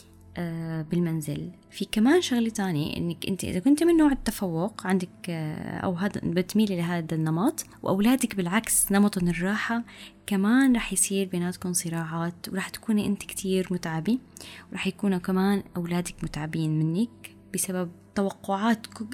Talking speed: 130 wpm